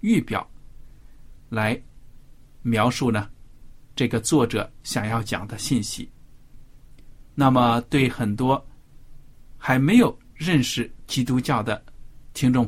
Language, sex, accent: Chinese, male, native